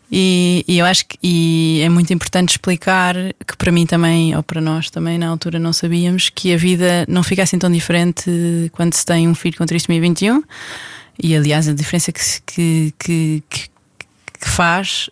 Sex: female